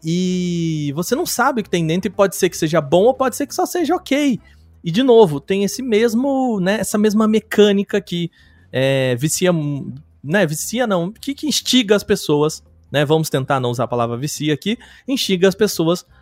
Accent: Brazilian